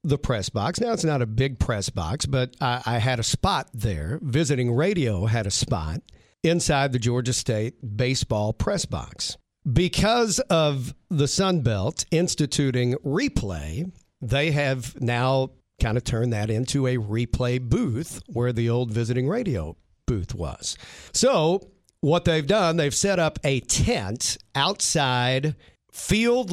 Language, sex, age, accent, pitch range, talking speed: English, male, 50-69, American, 110-145 Hz, 145 wpm